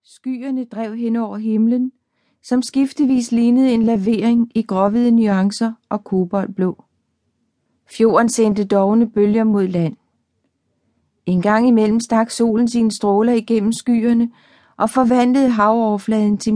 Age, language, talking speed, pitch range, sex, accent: 40-59, Danish, 125 wpm, 205-235 Hz, female, native